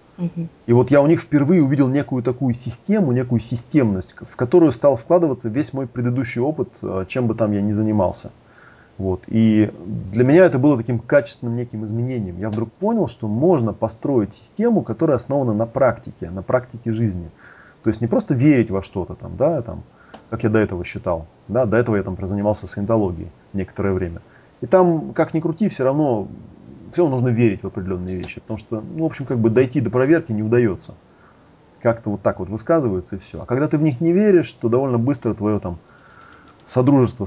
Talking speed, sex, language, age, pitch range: 190 wpm, male, Russian, 30-49, 100-130 Hz